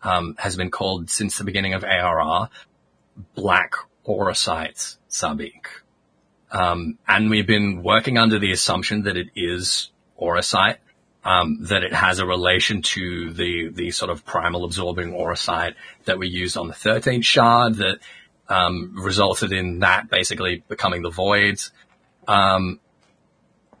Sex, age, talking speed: male, 30-49, 140 wpm